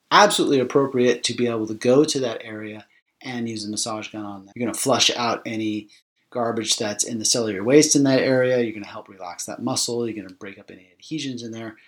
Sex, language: male, English